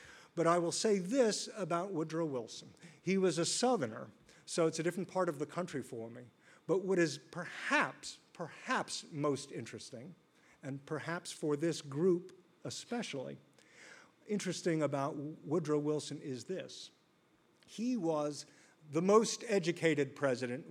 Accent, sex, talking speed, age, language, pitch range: American, male, 135 wpm, 50-69, English, 145-190 Hz